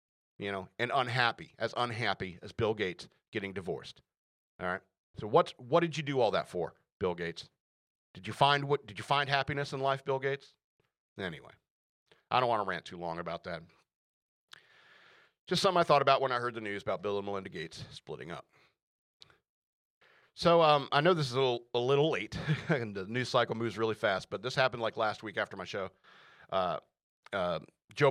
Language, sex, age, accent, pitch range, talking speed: English, male, 40-59, American, 110-145 Hz, 200 wpm